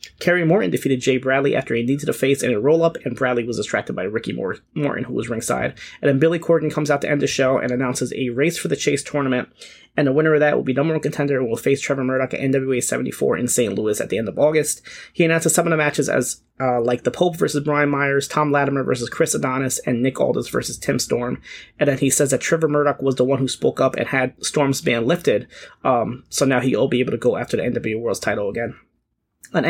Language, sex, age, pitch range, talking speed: English, male, 30-49, 130-155 Hz, 255 wpm